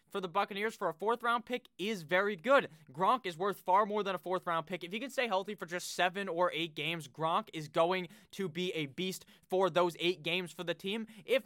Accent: American